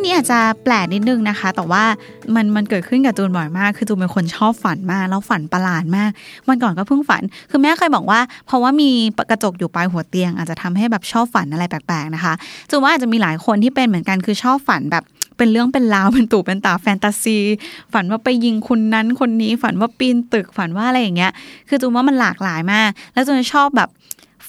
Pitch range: 185-240 Hz